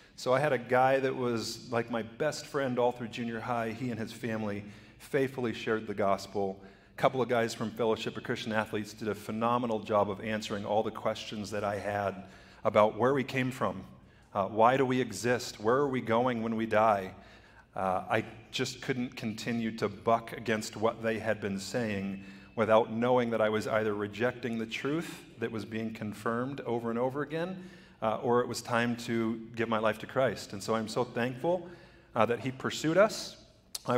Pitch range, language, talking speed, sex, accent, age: 110-135 Hz, English, 200 wpm, male, American, 40-59